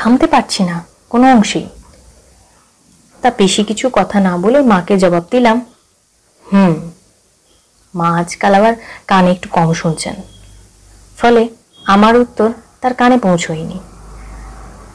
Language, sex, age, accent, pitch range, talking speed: Bengali, female, 30-49, native, 170-220 Hz, 110 wpm